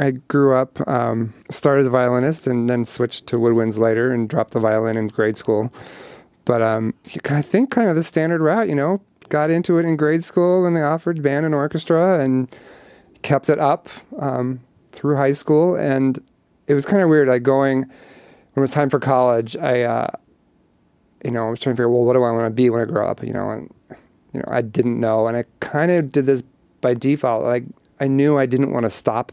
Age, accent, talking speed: 30-49, American, 225 wpm